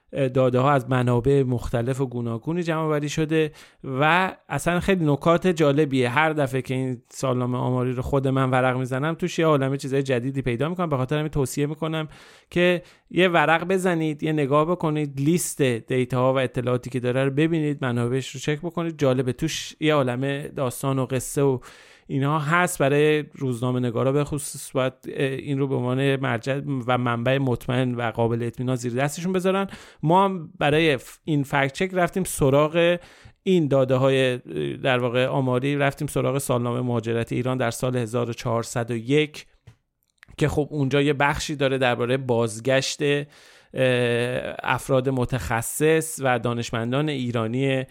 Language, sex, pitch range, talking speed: Persian, male, 125-150 Hz, 150 wpm